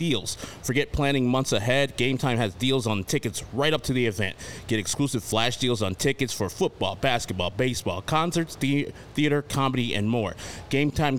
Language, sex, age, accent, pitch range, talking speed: English, male, 30-49, American, 110-145 Hz, 180 wpm